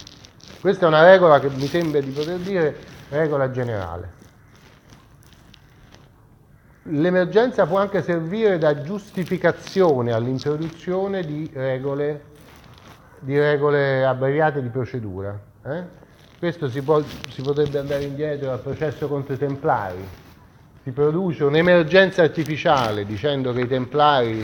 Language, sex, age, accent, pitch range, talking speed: Italian, male, 30-49, native, 125-160 Hz, 110 wpm